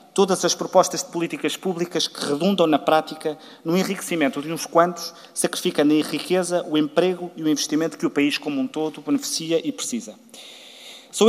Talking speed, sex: 175 wpm, male